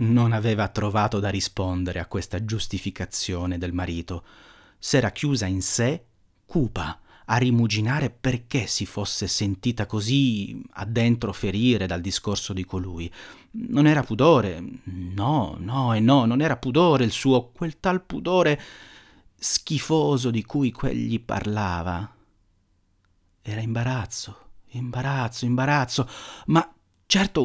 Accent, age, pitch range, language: native, 40-59, 95-120 Hz, Italian